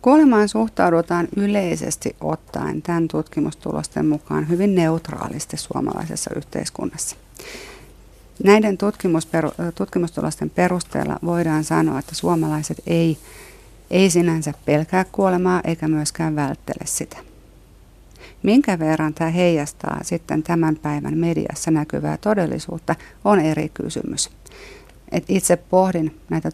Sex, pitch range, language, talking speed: female, 150-170 Hz, Finnish, 100 wpm